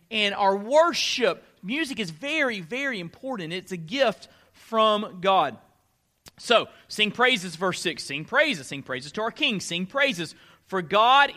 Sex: male